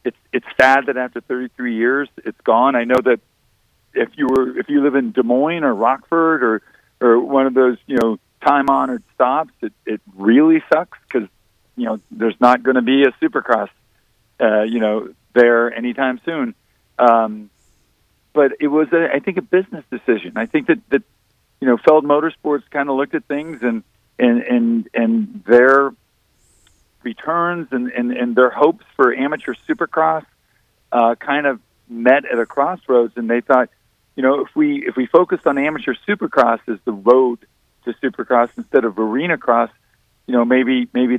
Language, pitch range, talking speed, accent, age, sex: English, 120-150 Hz, 180 wpm, American, 50-69, male